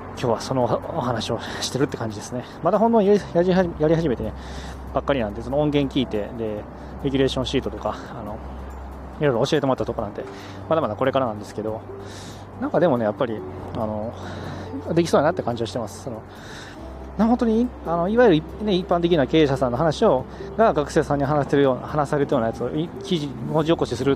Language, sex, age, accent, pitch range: Japanese, male, 20-39, native, 110-150 Hz